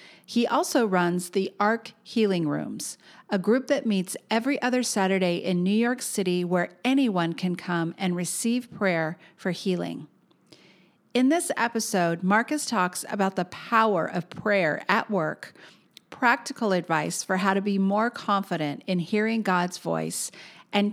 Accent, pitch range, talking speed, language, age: American, 175-230 Hz, 150 wpm, English, 50-69